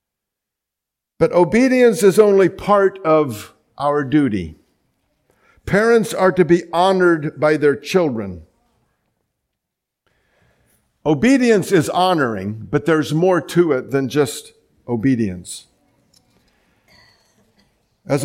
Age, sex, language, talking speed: 50-69, male, English, 90 wpm